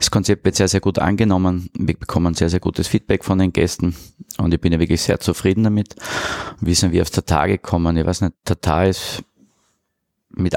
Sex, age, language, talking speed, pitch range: male, 20-39, German, 215 wpm, 80-95 Hz